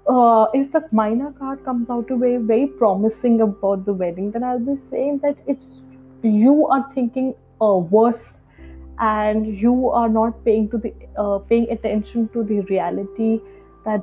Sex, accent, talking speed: female, Indian, 165 wpm